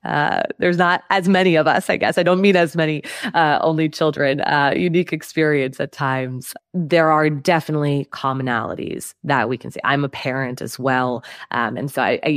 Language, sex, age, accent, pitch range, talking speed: English, female, 20-39, American, 140-180 Hz, 195 wpm